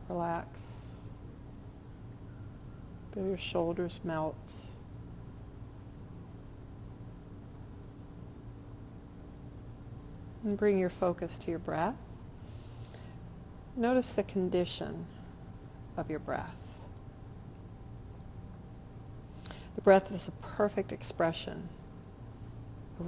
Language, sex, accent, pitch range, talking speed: English, female, American, 110-180 Hz, 65 wpm